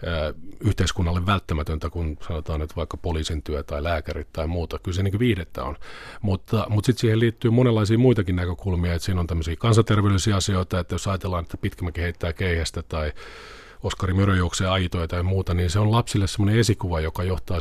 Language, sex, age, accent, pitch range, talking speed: Finnish, male, 40-59, native, 85-105 Hz, 175 wpm